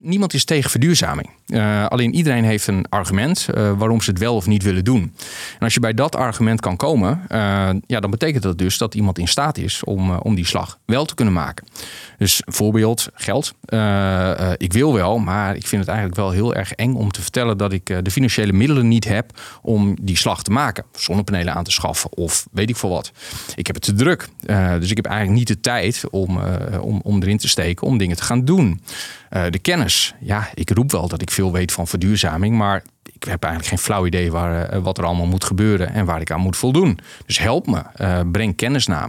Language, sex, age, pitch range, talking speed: Dutch, male, 40-59, 90-120 Hz, 235 wpm